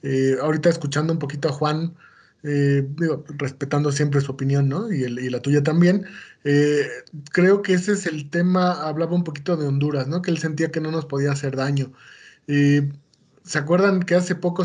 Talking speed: 195 wpm